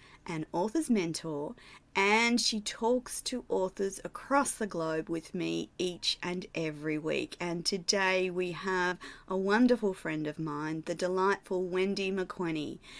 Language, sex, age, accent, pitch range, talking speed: English, female, 30-49, Australian, 165-210 Hz, 140 wpm